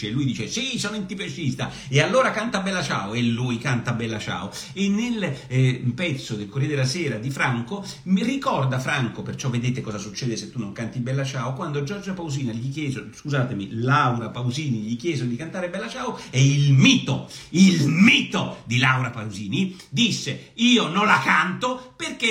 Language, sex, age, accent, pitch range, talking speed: Italian, male, 50-69, native, 140-225 Hz, 180 wpm